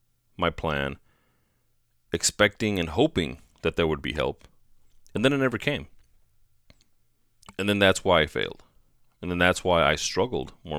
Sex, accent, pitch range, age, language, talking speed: male, American, 80-105 Hz, 30-49, English, 155 wpm